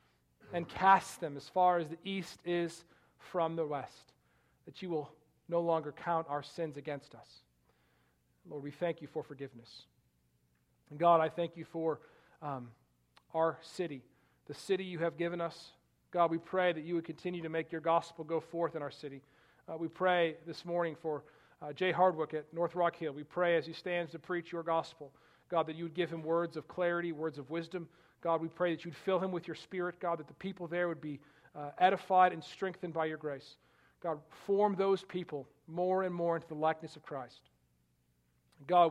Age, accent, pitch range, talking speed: 40-59, American, 150-175 Hz, 200 wpm